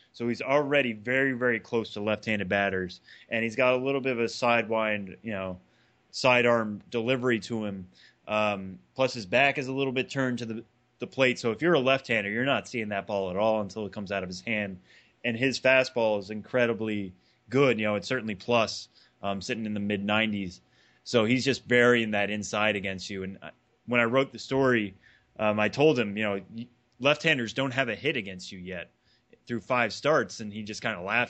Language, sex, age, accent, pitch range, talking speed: English, male, 20-39, American, 100-125 Hz, 210 wpm